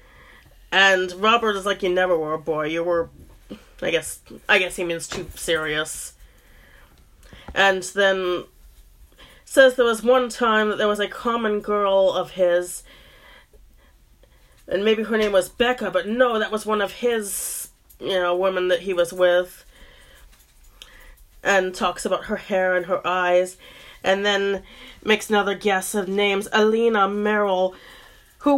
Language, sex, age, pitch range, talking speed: English, female, 30-49, 175-215 Hz, 150 wpm